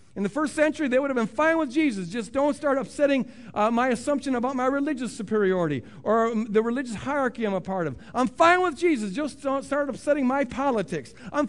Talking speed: 215 wpm